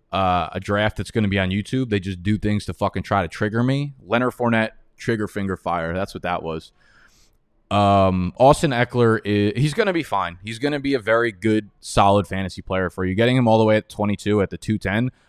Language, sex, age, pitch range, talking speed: English, male, 20-39, 100-125 Hz, 230 wpm